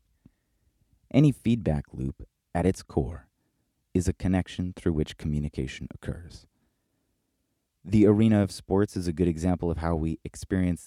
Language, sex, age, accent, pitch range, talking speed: English, male, 30-49, American, 75-100 Hz, 140 wpm